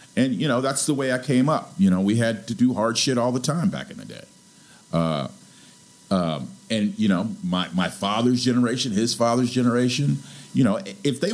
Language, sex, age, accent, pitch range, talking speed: English, male, 50-69, American, 110-160 Hz, 210 wpm